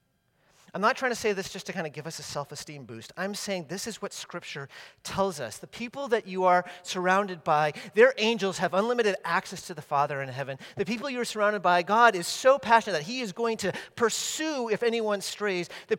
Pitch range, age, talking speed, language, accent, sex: 140-210 Hz, 40-59, 225 wpm, English, American, male